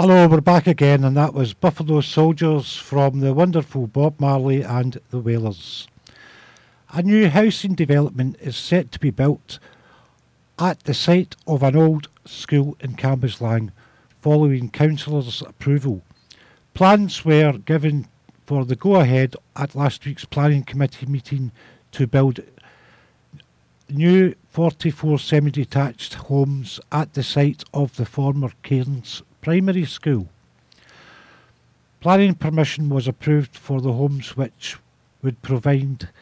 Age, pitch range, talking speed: 50-69, 130-155 Hz, 125 wpm